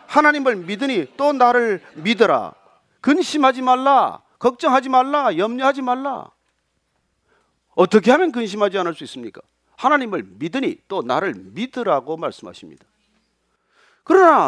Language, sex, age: Korean, male, 40-59